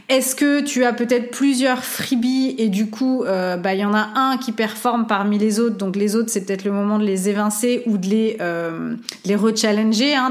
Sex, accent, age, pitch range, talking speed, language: female, French, 30-49, 210-255 Hz, 225 wpm, French